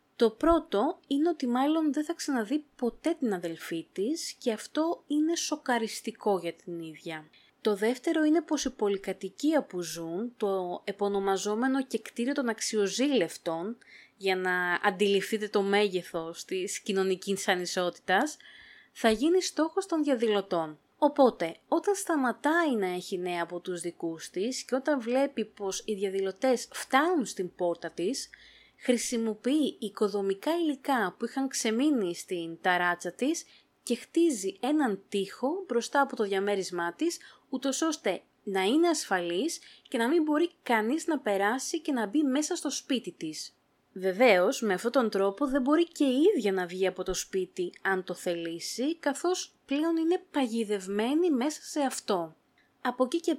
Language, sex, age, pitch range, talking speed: Greek, female, 20-39, 195-295 Hz, 145 wpm